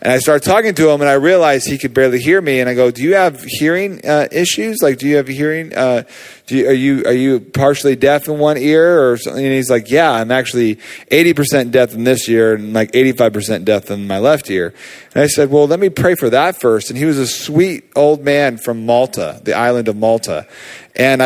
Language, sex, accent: English, male, American